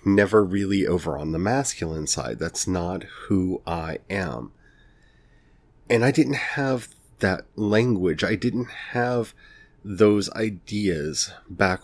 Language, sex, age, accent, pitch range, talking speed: English, male, 30-49, American, 85-110 Hz, 120 wpm